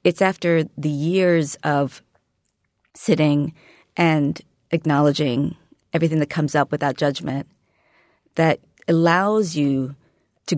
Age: 40-59